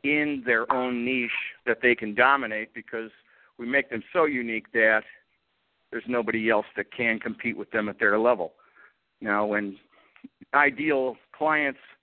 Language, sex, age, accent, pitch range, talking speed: English, male, 50-69, American, 110-135 Hz, 150 wpm